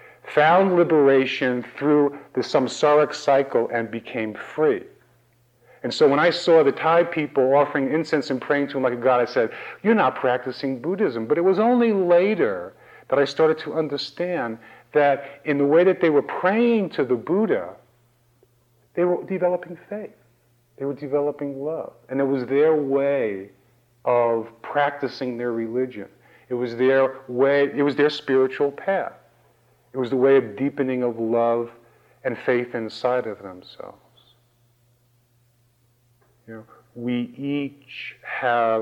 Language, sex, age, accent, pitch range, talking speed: English, male, 50-69, American, 120-145 Hz, 145 wpm